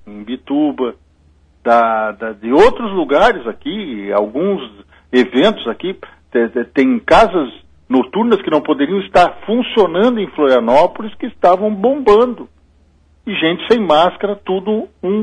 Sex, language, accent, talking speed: male, Portuguese, Brazilian, 120 wpm